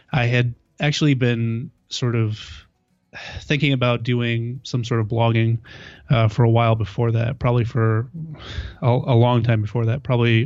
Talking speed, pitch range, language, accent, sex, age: 160 wpm, 115-125 Hz, English, American, male, 30-49